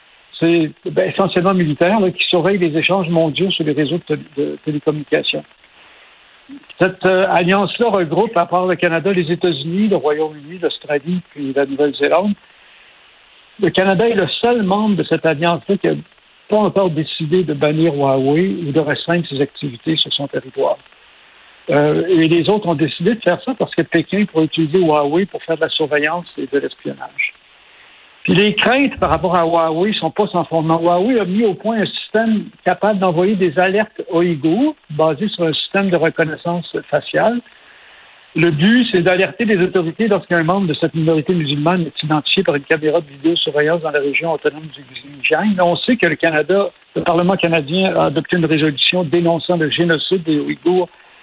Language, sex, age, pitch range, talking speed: French, male, 70-89, 160-190 Hz, 180 wpm